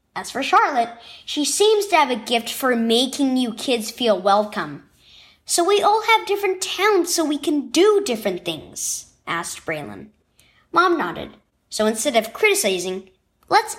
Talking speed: 155 wpm